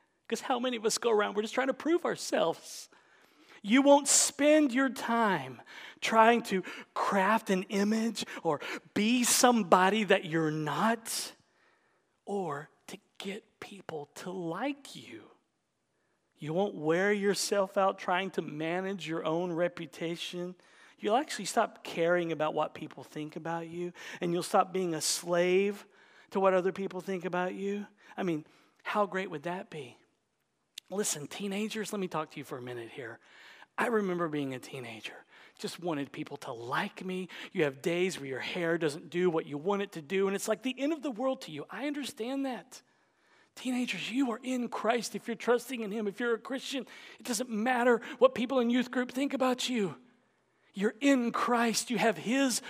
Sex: male